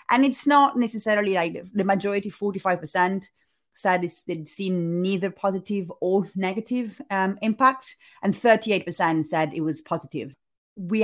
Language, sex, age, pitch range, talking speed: English, female, 30-49, 160-200 Hz, 135 wpm